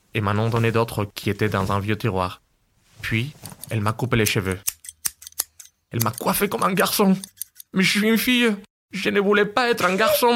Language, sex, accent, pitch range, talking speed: French, male, French, 105-155 Hz, 205 wpm